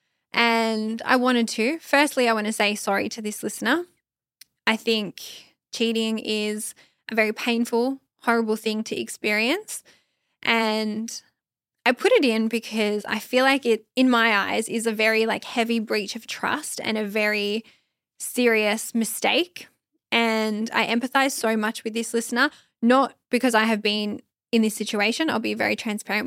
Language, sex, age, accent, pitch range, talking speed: English, female, 10-29, Australian, 215-250 Hz, 160 wpm